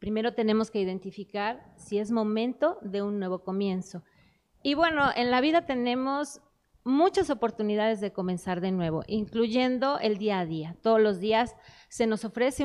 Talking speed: 160 wpm